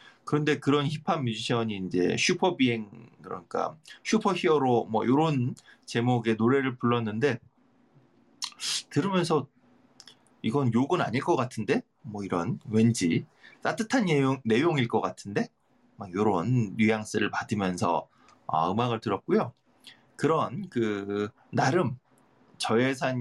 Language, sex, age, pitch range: Korean, male, 30-49, 110-155 Hz